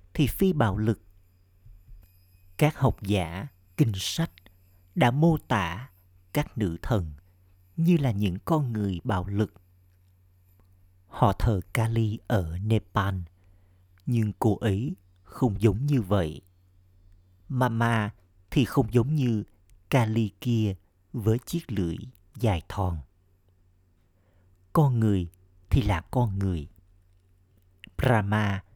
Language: Vietnamese